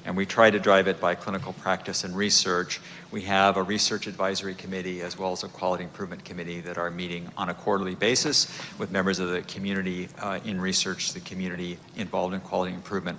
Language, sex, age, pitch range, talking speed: English, male, 50-69, 90-105 Hz, 205 wpm